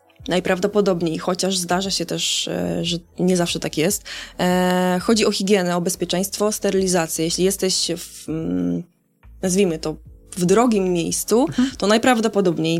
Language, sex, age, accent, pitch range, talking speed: Polish, female, 20-39, native, 170-200 Hz, 125 wpm